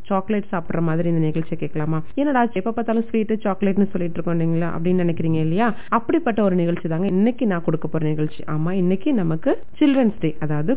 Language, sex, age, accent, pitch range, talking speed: Tamil, female, 30-49, native, 175-235 Hz, 175 wpm